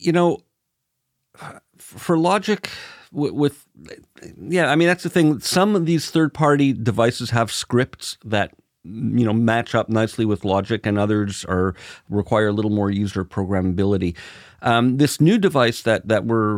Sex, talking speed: male, 155 wpm